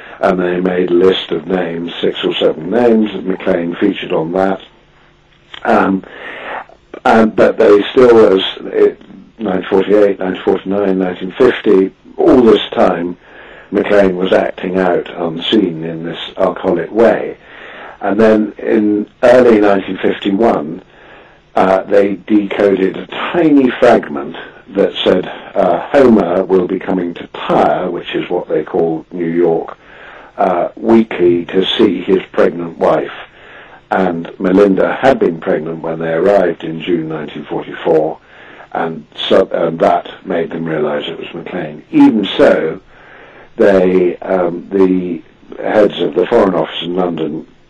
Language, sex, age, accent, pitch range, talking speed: English, male, 50-69, British, 85-105 Hz, 125 wpm